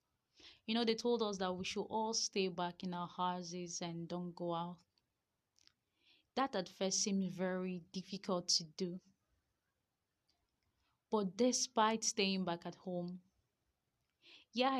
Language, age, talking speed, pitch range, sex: English, 20-39, 135 wpm, 175-195 Hz, female